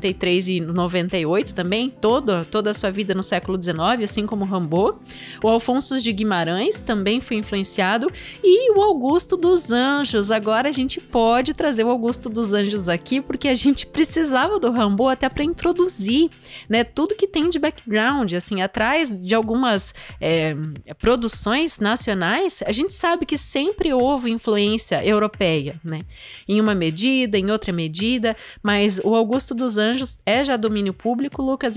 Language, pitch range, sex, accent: Portuguese, 200-265 Hz, female, Brazilian